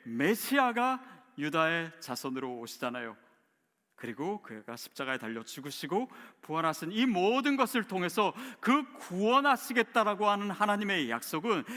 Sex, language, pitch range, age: male, Korean, 130-215 Hz, 40-59